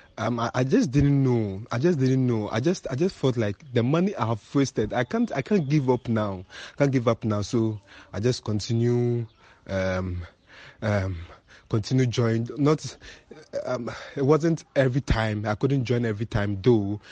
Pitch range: 110-135 Hz